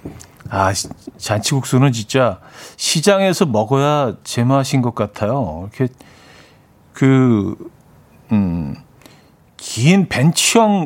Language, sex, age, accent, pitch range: Korean, male, 40-59, native, 110-145 Hz